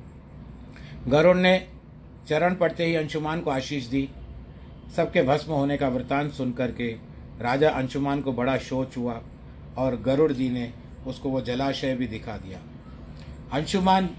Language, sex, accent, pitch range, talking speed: Hindi, male, native, 115-150 Hz, 140 wpm